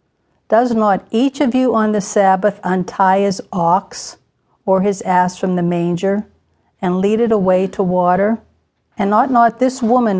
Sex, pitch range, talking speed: female, 170-220 Hz, 165 wpm